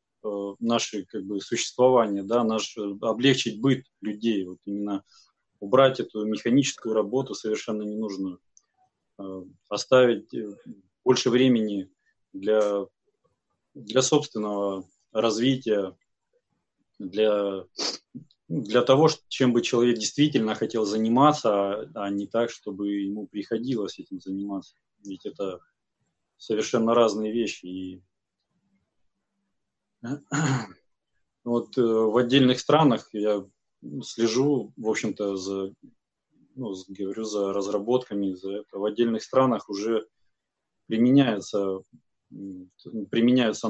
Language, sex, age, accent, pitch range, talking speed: Russian, male, 20-39, native, 100-130 Hz, 95 wpm